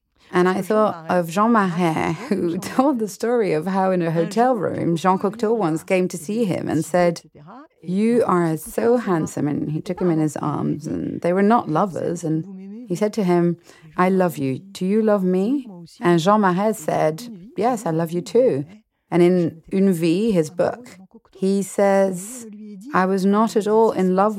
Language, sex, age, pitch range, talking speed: French, female, 40-59, 175-225 Hz, 190 wpm